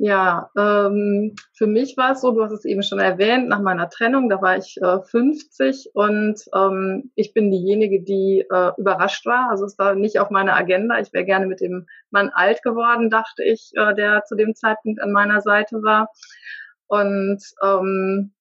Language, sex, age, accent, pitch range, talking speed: German, female, 30-49, German, 195-220 Hz, 190 wpm